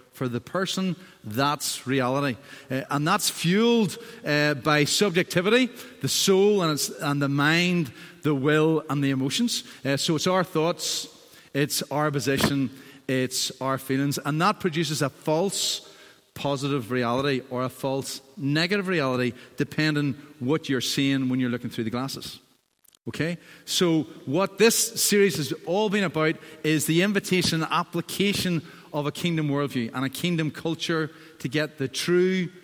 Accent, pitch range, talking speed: Irish, 135-175 Hz, 155 wpm